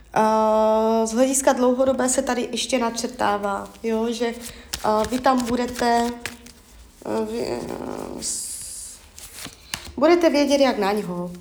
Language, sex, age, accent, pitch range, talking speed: Czech, female, 20-39, native, 200-250 Hz, 105 wpm